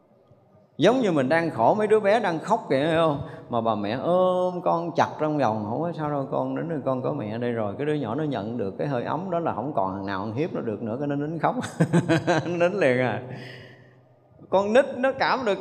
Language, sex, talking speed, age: Vietnamese, male, 250 wpm, 20-39